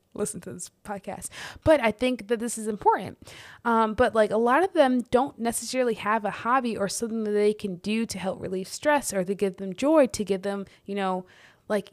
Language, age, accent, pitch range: English, 20-39, American, 200-240 Hz